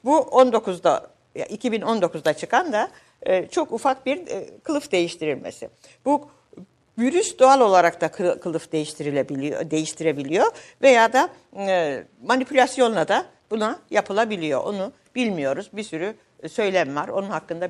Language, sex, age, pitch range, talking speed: Turkish, female, 60-79, 170-250 Hz, 110 wpm